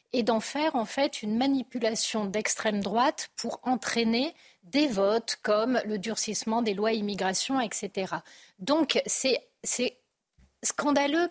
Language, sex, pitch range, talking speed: French, female, 210-265 Hz, 120 wpm